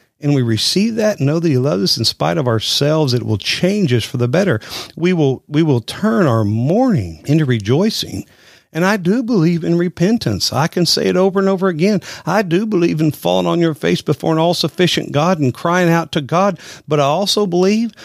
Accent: American